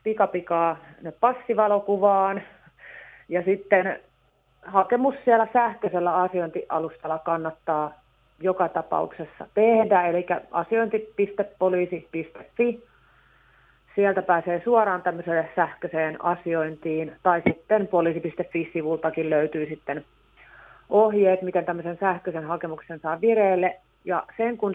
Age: 30-49